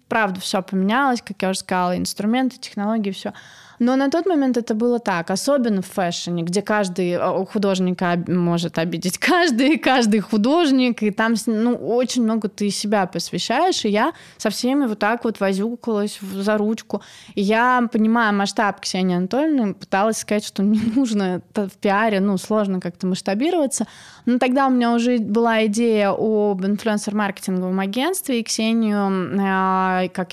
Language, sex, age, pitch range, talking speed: Russian, female, 20-39, 185-230 Hz, 150 wpm